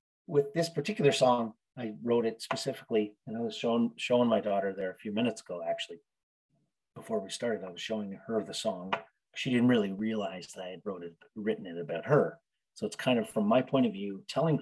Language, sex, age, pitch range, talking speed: English, male, 30-49, 105-165 Hz, 215 wpm